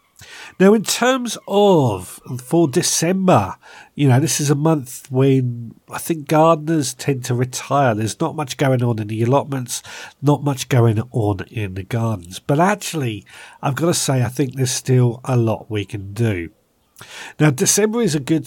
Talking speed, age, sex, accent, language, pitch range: 175 wpm, 50-69, male, British, English, 110-145 Hz